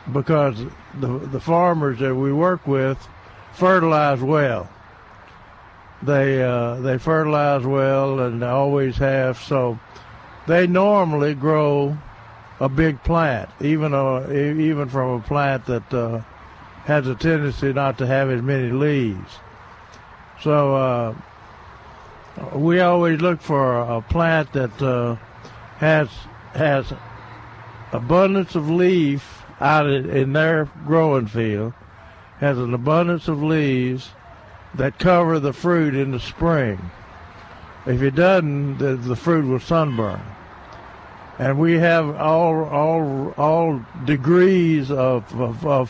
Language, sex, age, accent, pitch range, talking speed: English, male, 60-79, American, 115-155 Hz, 120 wpm